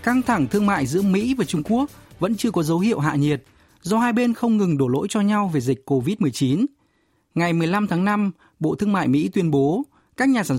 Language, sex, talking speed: Vietnamese, male, 230 wpm